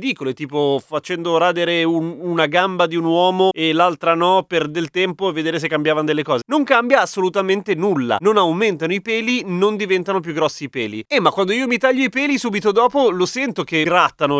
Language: Italian